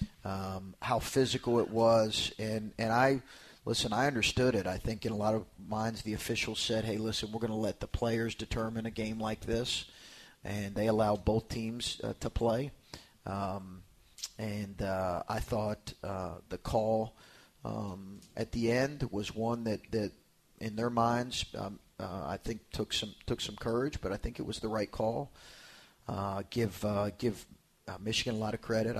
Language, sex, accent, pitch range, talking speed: English, male, American, 100-115 Hz, 180 wpm